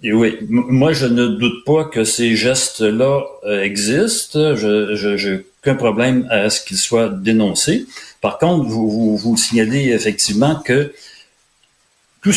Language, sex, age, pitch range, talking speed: French, male, 40-59, 125-170 Hz, 150 wpm